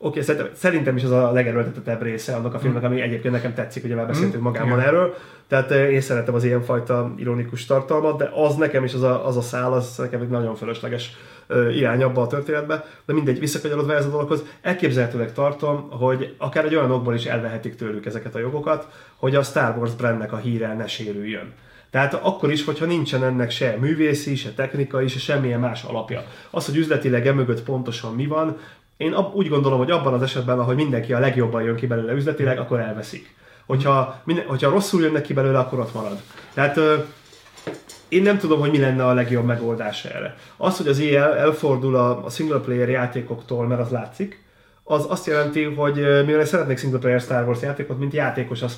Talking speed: 195 wpm